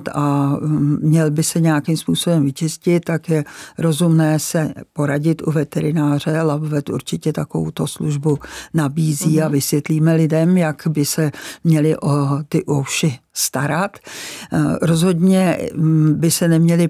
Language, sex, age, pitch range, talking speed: Czech, female, 50-69, 150-160 Hz, 120 wpm